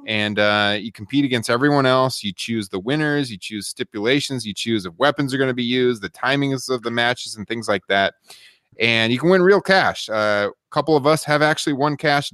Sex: male